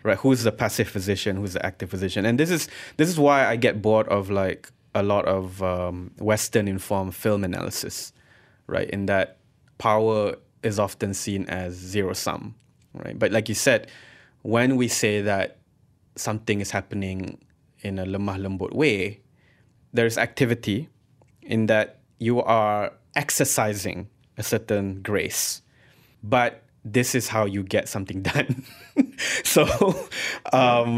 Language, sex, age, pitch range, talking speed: English, male, 20-39, 100-125 Hz, 140 wpm